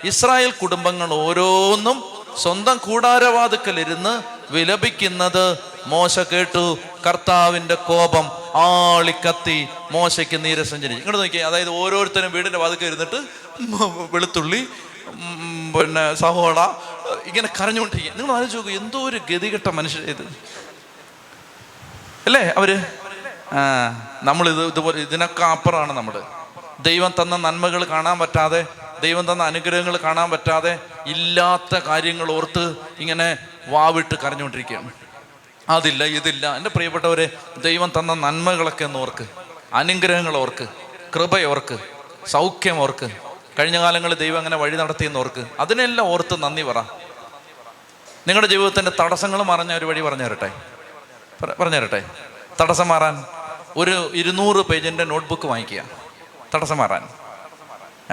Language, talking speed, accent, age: Malayalam, 95 wpm, native, 30-49